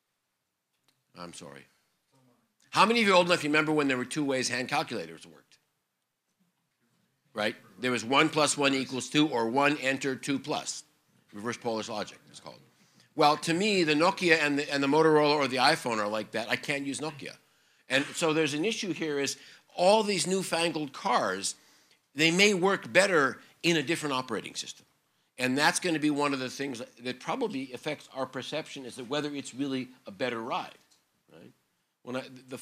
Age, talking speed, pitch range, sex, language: 50-69, 185 wpm, 130-160 Hz, male, English